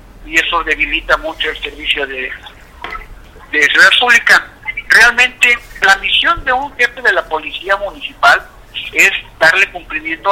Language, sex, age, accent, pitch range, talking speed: Spanish, male, 50-69, Mexican, 170-240 Hz, 135 wpm